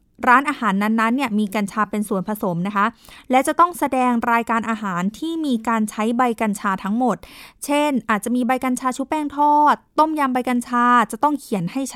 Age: 20-39